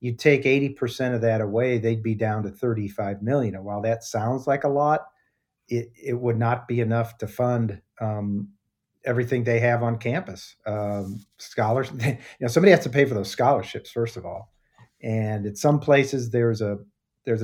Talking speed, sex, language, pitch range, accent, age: 190 wpm, male, English, 110-125 Hz, American, 50-69